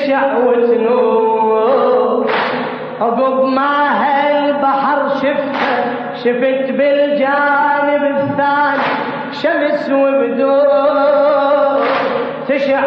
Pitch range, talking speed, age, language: 245-285 Hz, 50 wpm, 30-49, Arabic